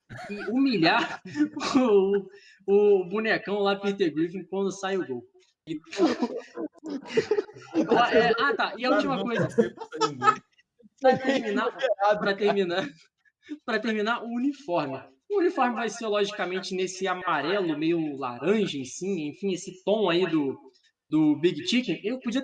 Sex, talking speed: male, 110 wpm